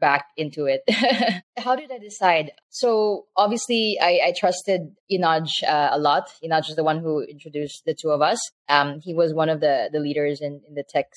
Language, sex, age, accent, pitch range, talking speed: English, female, 20-39, Filipino, 145-170 Hz, 205 wpm